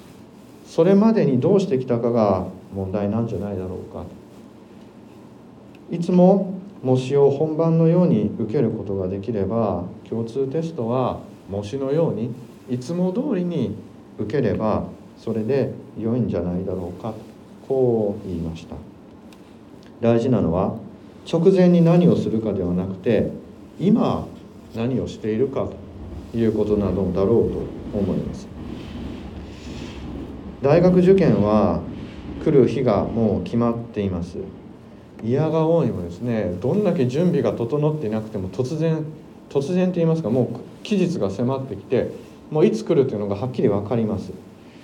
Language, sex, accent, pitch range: Japanese, male, native, 100-150 Hz